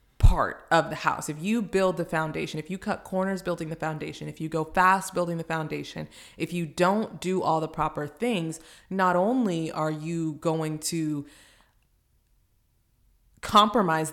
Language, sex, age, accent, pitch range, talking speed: English, female, 20-39, American, 155-185 Hz, 160 wpm